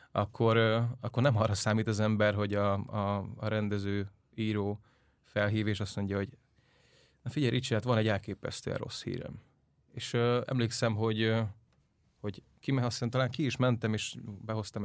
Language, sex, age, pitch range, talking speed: English, male, 30-49, 105-125 Hz, 160 wpm